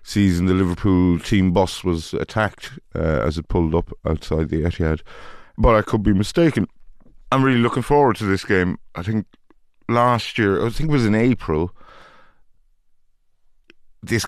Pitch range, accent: 85-105 Hz, British